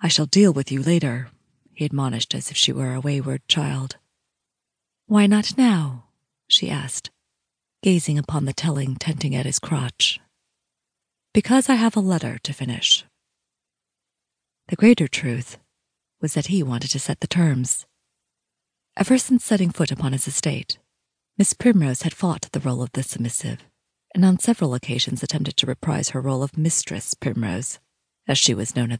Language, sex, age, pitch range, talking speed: English, female, 30-49, 130-180 Hz, 165 wpm